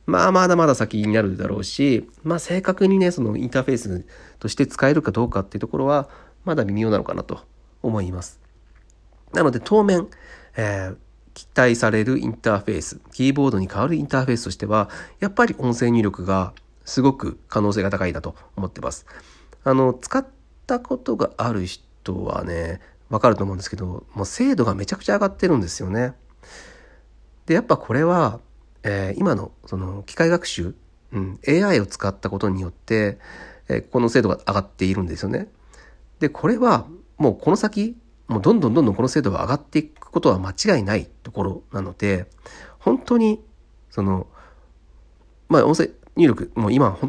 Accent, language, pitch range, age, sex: native, Japanese, 95-140 Hz, 40-59, male